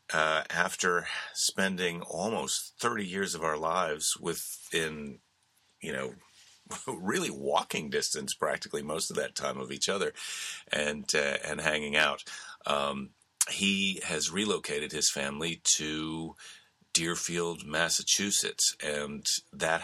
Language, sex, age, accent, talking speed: English, male, 40-59, American, 120 wpm